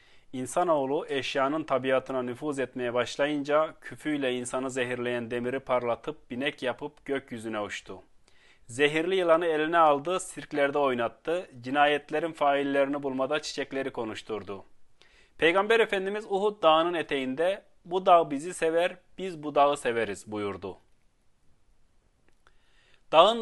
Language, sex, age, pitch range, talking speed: Turkish, male, 30-49, 125-160 Hz, 105 wpm